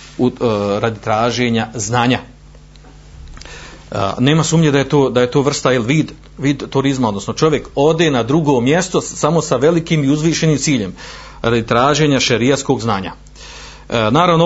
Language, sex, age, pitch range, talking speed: Croatian, male, 40-59, 110-135 Hz, 155 wpm